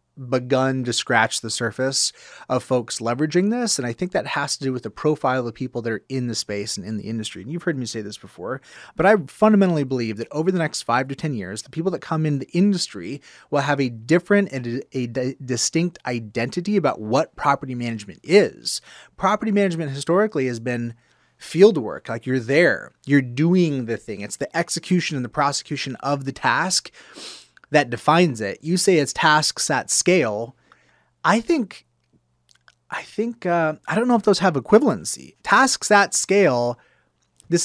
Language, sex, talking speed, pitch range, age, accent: English, male, 185 wpm, 120-165 Hz, 30-49, American